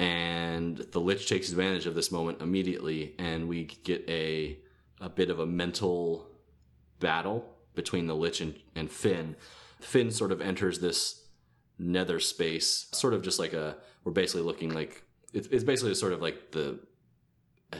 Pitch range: 80-95 Hz